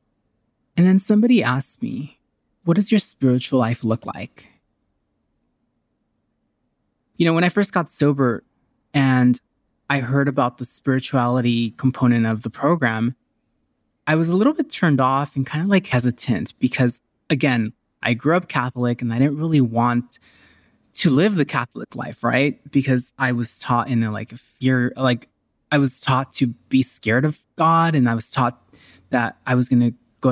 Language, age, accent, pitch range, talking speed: English, 20-39, American, 120-155 Hz, 170 wpm